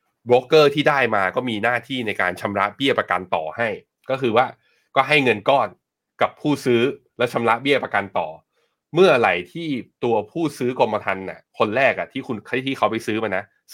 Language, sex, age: Thai, male, 20-39